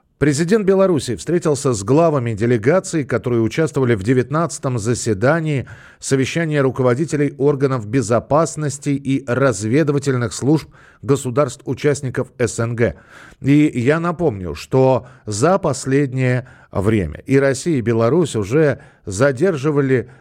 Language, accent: Russian, native